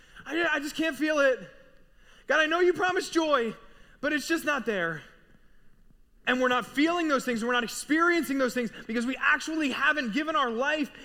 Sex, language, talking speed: male, English, 185 wpm